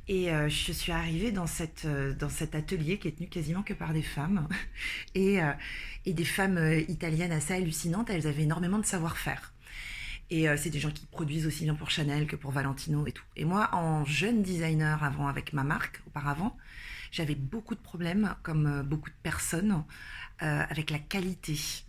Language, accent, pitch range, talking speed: French, French, 155-190 Hz, 175 wpm